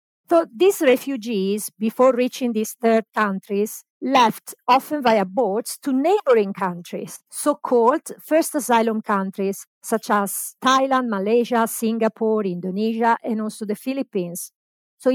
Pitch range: 215-270 Hz